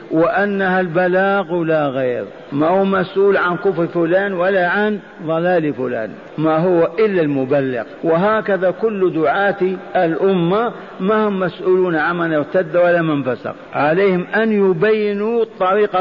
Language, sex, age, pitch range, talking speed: Arabic, male, 50-69, 155-195 Hz, 125 wpm